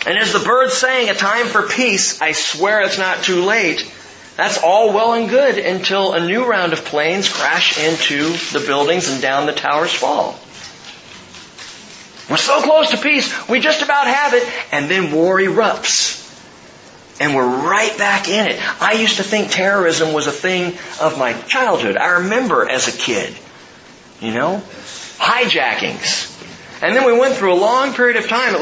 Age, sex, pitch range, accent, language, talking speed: 40-59, male, 145-220 Hz, American, English, 180 wpm